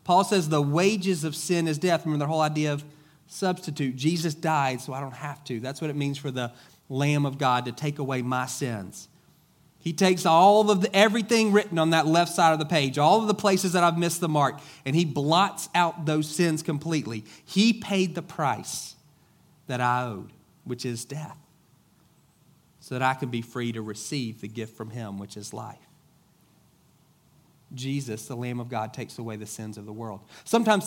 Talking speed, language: 200 wpm, English